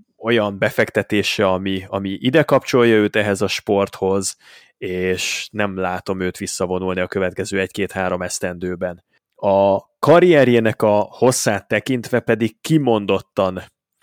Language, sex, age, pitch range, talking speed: Hungarian, male, 20-39, 95-115 Hz, 110 wpm